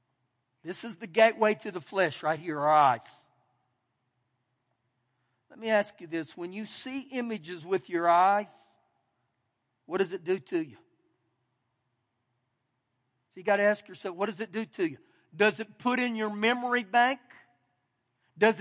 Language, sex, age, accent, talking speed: English, male, 50-69, American, 160 wpm